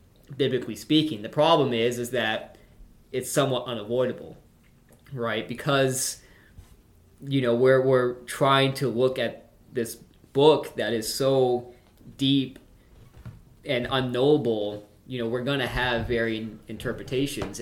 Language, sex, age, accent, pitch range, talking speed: English, male, 20-39, American, 110-130 Hz, 125 wpm